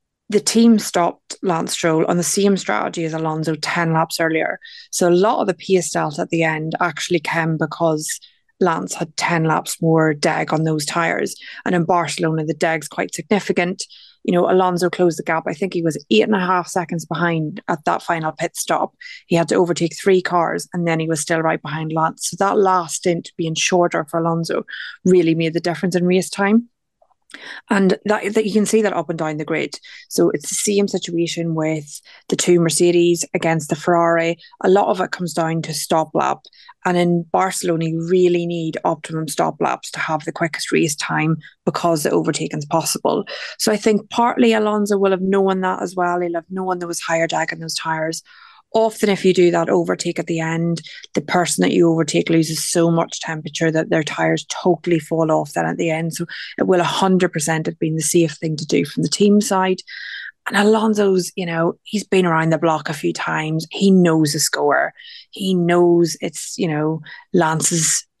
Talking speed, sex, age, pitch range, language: 205 wpm, female, 20-39, 160-190 Hz, English